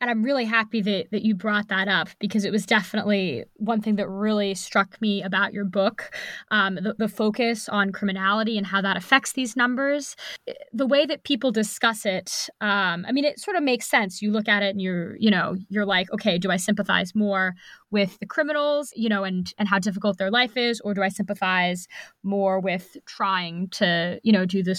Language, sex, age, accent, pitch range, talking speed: English, female, 20-39, American, 195-235 Hz, 215 wpm